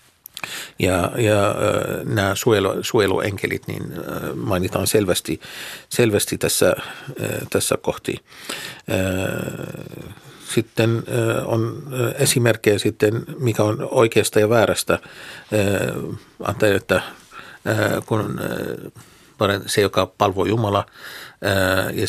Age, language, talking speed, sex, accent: 50-69, Finnish, 70 wpm, male, native